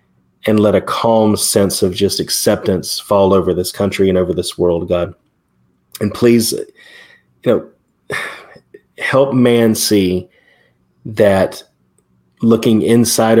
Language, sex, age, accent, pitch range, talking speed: English, male, 30-49, American, 95-105 Hz, 110 wpm